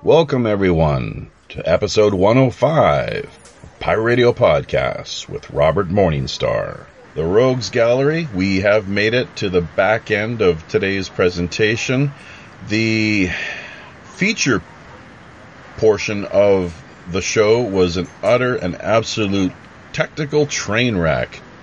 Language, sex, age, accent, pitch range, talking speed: English, male, 40-59, American, 90-120 Hz, 110 wpm